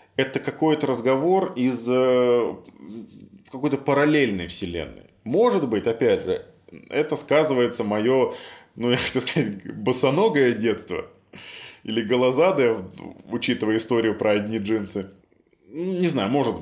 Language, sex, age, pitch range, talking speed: Russian, male, 20-39, 110-155 Hz, 110 wpm